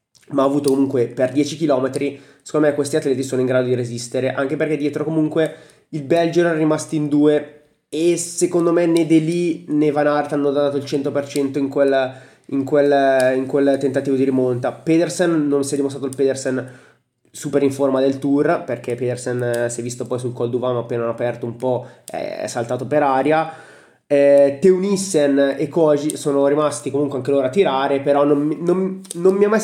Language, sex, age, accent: Italian, male, 20-39, native